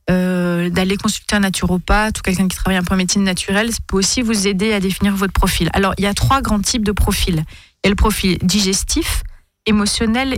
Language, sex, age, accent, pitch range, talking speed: French, female, 30-49, French, 180-215 Hz, 215 wpm